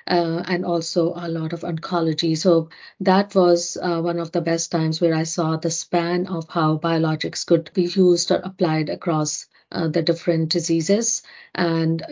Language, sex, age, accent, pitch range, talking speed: English, female, 50-69, Indian, 165-180 Hz, 175 wpm